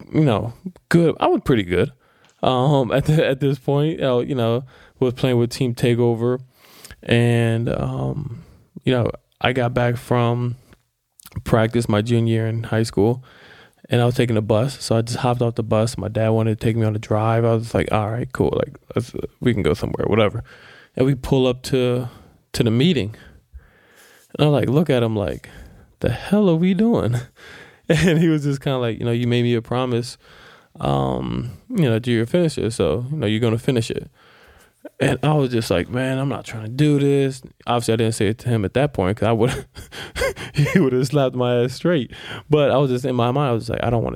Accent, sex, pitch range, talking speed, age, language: American, male, 115-130 Hz, 225 wpm, 20-39, English